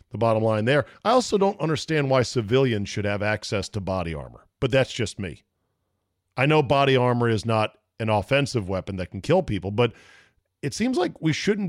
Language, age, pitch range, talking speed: English, 40-59, 95-140 Hz, 200 wpm